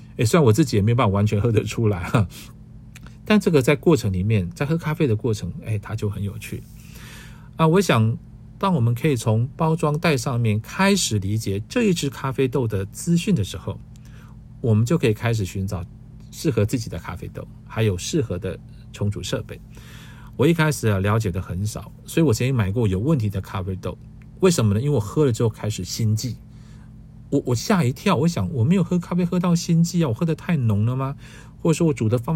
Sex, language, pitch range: male, Chinese, 105-140 Hz